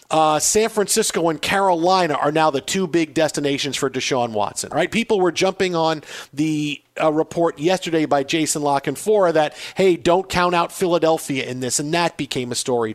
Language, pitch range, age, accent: English, 150-205 Hz, 40-59, American